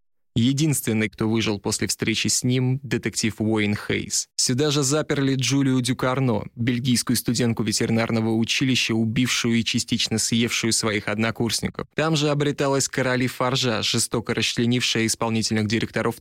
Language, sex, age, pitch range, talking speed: Russian, male, 20-39, 110-130 Hz, 125 wpm